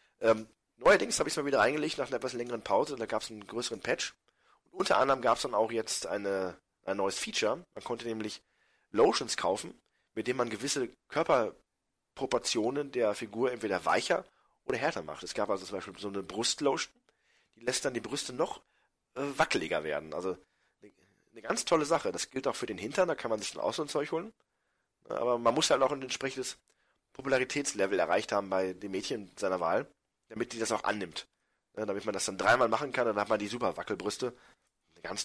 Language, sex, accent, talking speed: German, male, German, 210 wpm